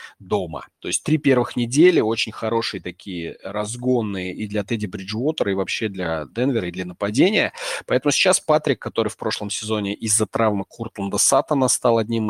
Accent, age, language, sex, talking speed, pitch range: native, 30-49, Russian, male, 160 wpm, 95-115 Hz